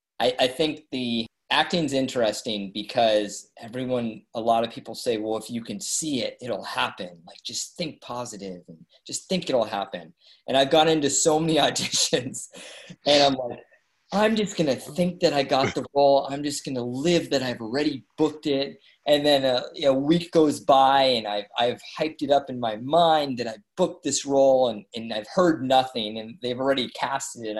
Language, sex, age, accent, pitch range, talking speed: English, male, 20-39, American, 115-145 Hz, 195 wpm